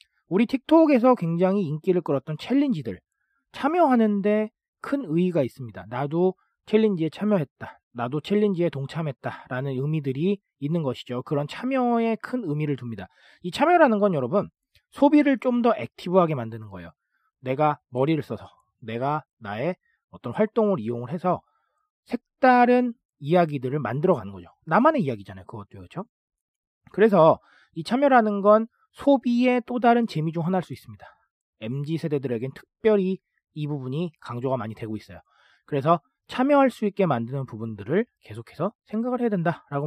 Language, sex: Korean, male